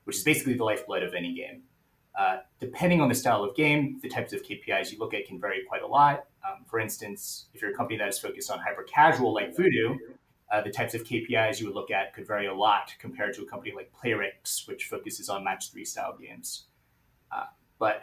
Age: 30-49